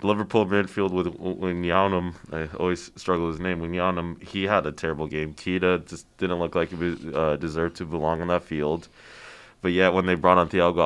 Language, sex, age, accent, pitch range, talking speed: English, male, 20-39, American, 80-95 Hz, 215 wpm